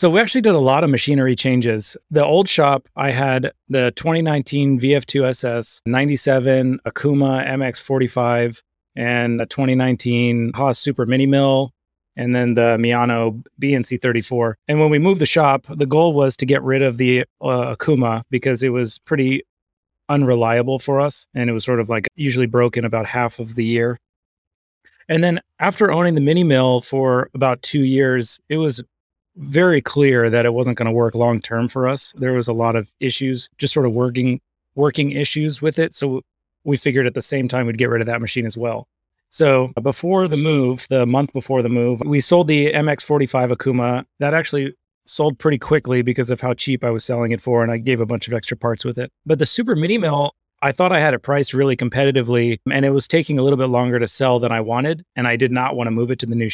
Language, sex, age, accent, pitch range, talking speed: English, male, 30-49, American, 120-140 Hz, 210 wpm